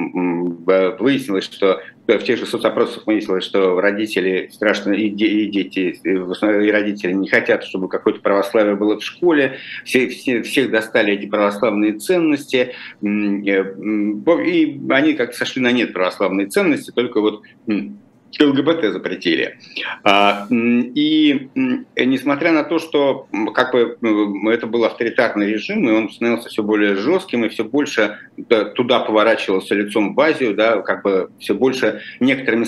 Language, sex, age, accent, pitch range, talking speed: Russian, male, 50-69, native, 105-135 Hz, 130 wpm